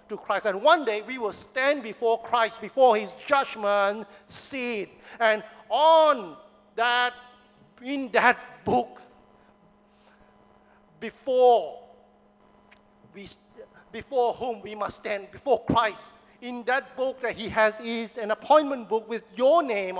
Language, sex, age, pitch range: English, male, 50-69, 200-250 Hz